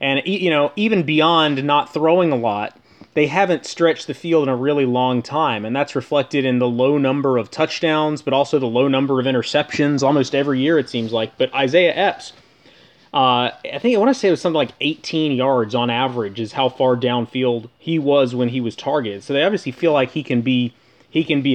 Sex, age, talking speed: male, 30-49, 215 wpm